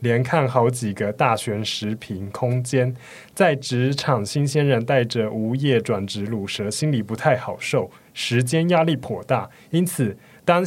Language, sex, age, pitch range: Chinese, male, 20-39, 120-155 Hz